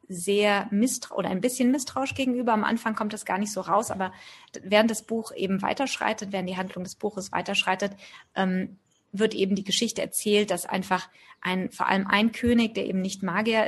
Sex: female